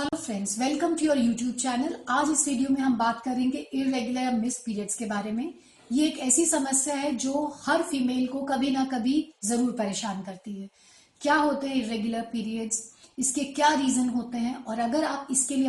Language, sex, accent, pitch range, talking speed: Hindi, female, native, 235-285 Hz, 190 wpm